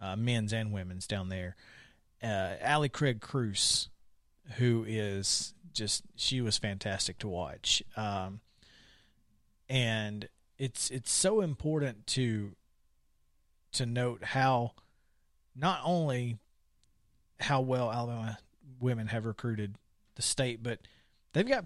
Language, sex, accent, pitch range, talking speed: English, male, American, 100-135 Hz, 115 wpm